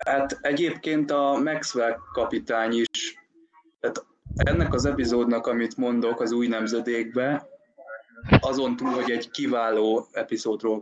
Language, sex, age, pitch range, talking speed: Hungarian, male, 20-39, 110-135 Hz, 115 wpm